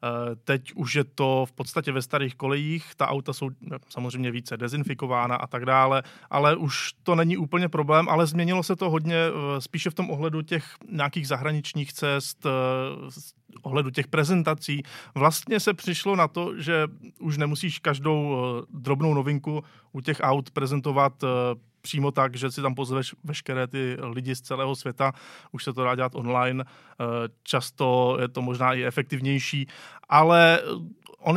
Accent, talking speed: native, 155 wpm